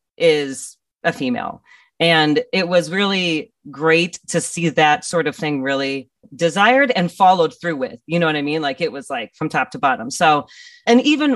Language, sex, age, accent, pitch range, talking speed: English, female, 30-49, American, 160-215 Hz, 190 wpm